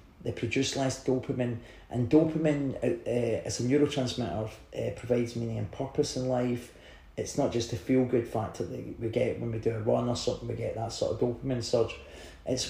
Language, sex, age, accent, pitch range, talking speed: English, male, 30-49, British, 115-135 Hz, 205 wpm